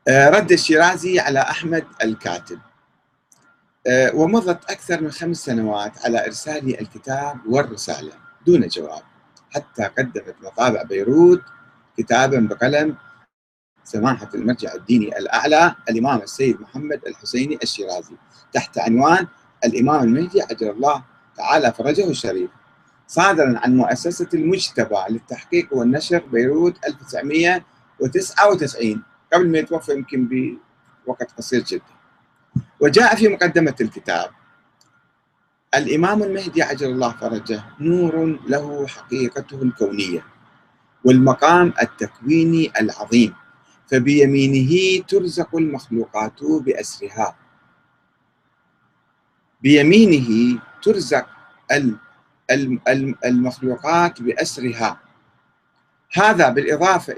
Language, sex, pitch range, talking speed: Arabic, male, 125-175 Hz, 85 wpm